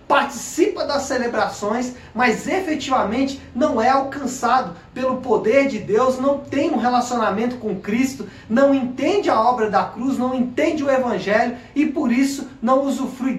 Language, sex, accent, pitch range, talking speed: Portuguese, male, Brazilian, 220-270 Hz, 150 wpm